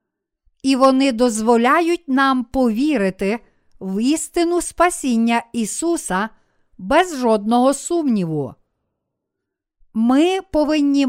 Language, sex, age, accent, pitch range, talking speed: Ukrainian, female, 50-69, native, 220-295 Hz, 75 wpm